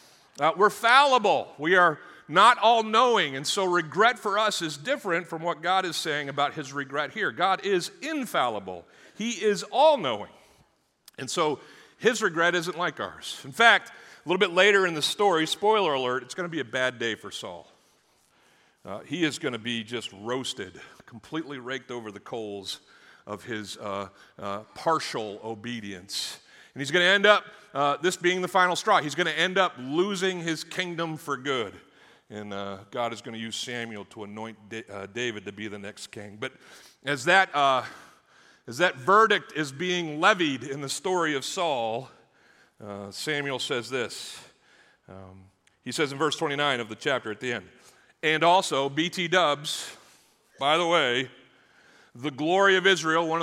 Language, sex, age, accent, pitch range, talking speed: English, male, 50-69, American, 115-180 Hz, 175 wpm